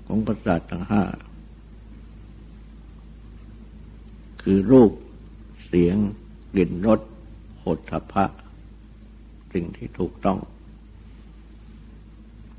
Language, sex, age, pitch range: Thai, male, 60-79, 100-110 Hz